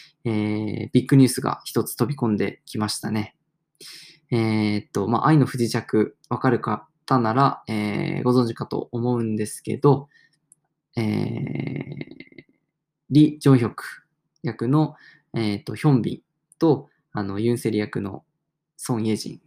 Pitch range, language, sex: 110-155 Hz, Japanese, male